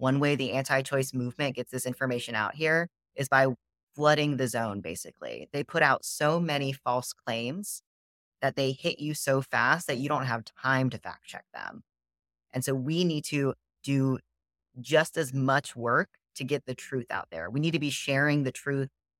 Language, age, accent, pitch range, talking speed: English, 30-49, American, 125-145 Hz, 190 wpm